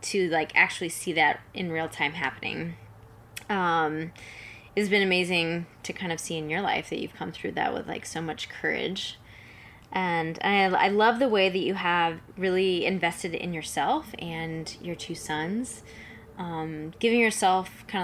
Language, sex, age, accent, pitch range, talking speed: English, female, 20-39, American, 150-180 Hz, 170 wpm